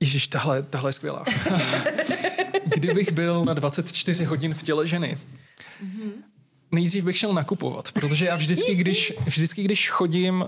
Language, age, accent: Czech, 20-39, native